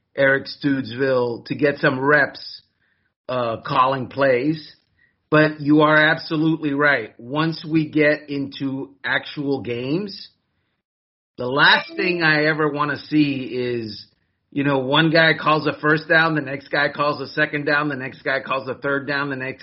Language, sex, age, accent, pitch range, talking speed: English, male, 30-49, American, 140-175 Hz, 160 wpm